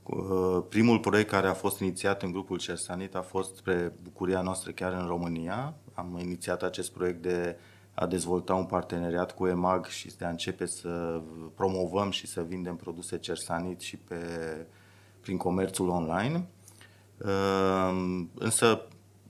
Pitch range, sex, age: 90-95 Hz, male, 30-49